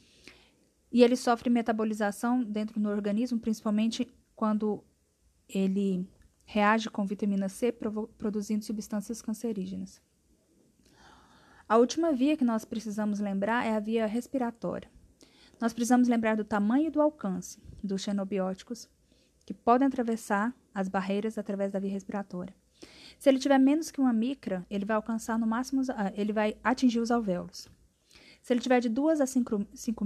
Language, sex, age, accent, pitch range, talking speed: Portuguese, female, 10-29, Brazilian, 200-245 Hz, 145 wpm